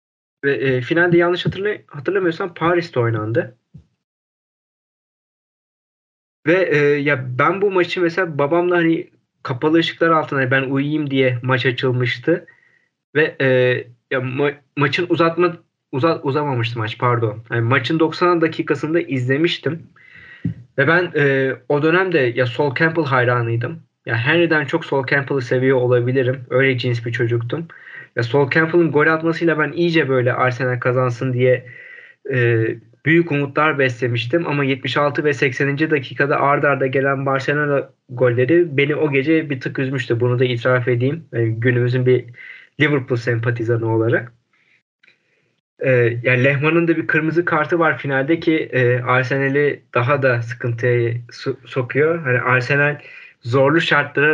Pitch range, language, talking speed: 125-160 Hz, Turkish, 135 wpm